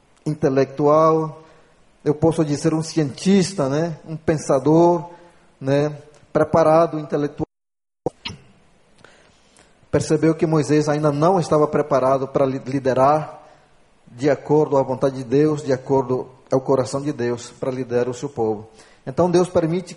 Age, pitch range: 20-39, 135-155 Hz